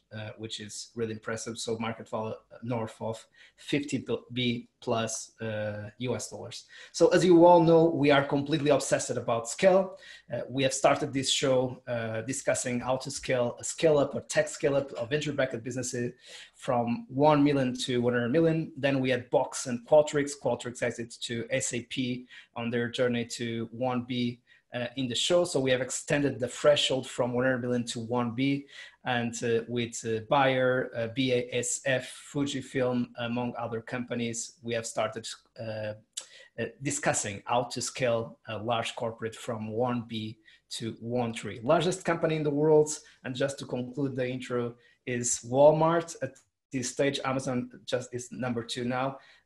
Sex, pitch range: male, 115-135 Hz